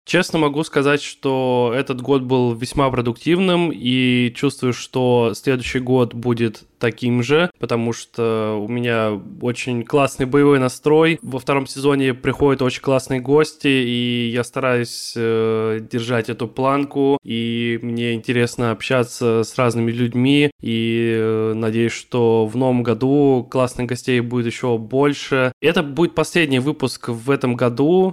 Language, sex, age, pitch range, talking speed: Russian, male, 20-39, 120-140 Hz, 140 wpm